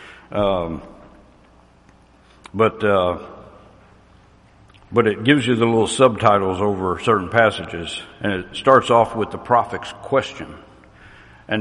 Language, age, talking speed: English, 60-79, 115 wpm